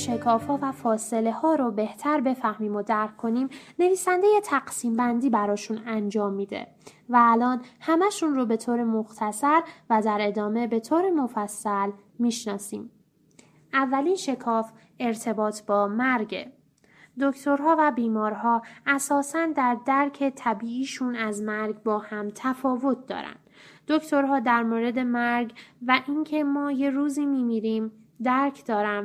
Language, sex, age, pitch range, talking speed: Persian, female, 10-29, 220-280 Hz, 130 wpm